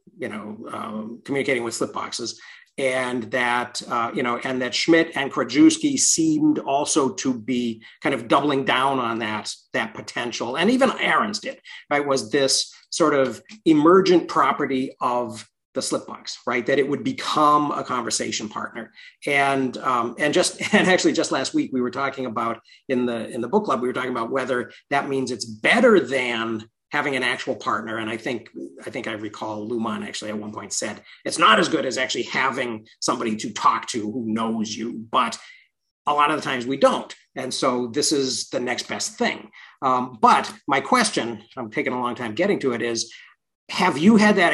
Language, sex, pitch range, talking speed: English, male, 120-150 Hz, 195 wpm